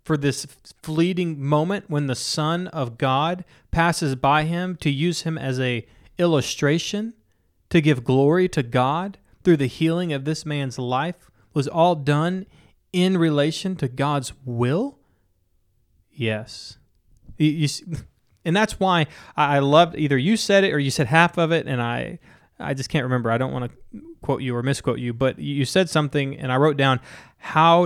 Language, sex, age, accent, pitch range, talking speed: English, male, 30-49, American, 125-155 Hz, 170 wpm